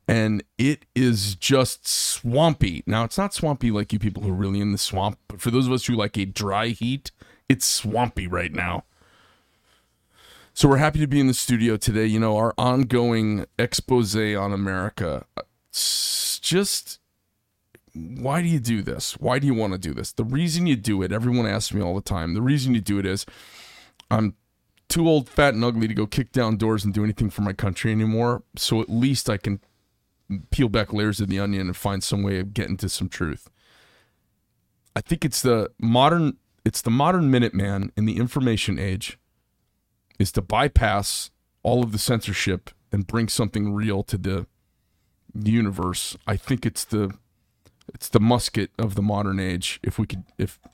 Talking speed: 190 wpm